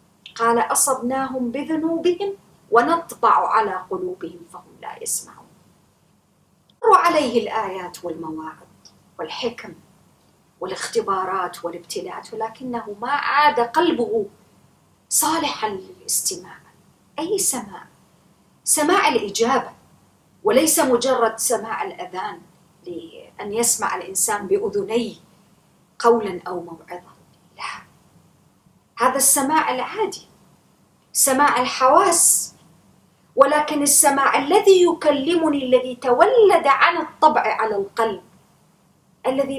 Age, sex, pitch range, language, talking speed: 40-59, female, 200-310 Hz, English, 80 wpm